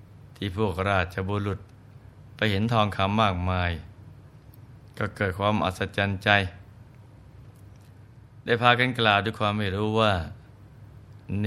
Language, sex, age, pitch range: Thai, male, 20-39, 100-120 Hz